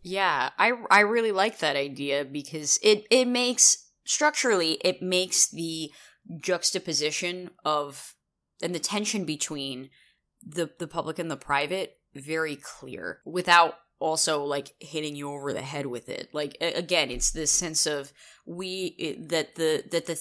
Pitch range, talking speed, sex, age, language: 145-185 Hz, 150 wpm, female, 20-39, English